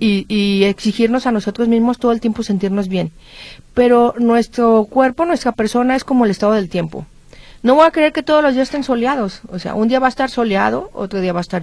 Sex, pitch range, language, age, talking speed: female, 195-245 Hz, Spanish, 40-59, 230 wpm